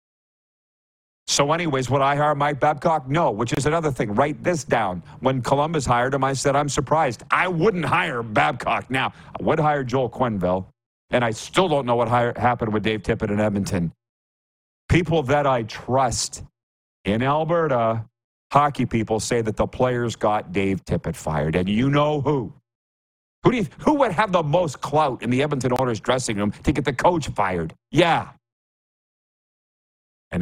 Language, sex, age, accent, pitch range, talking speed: English, male, 50-69, American, 105-145 Hz, 170 wpm